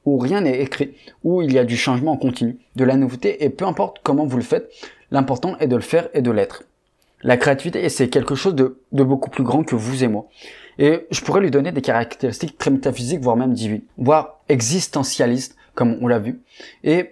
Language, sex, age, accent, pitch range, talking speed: French, male, 20-39, French, 125-155 Hz, 220 wpm